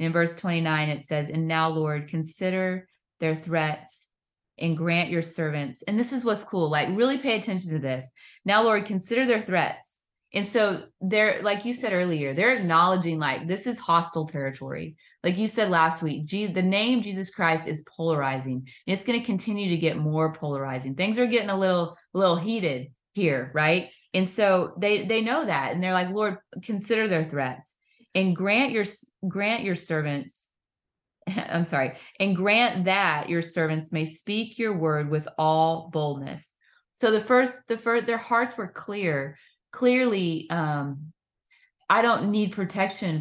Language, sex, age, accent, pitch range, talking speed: English, female, 30-49, American, 155-205 Hz, 170 wpm